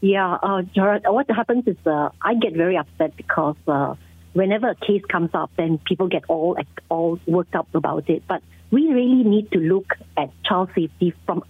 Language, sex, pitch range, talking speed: English, female, 165-205 Hz, 195 wpm